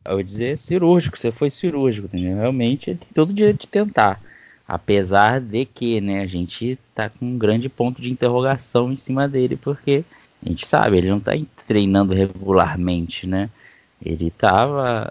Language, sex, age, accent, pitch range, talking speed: Portuguese, male, 20-39, Brazilian, 100-135 Hz, 175 wpm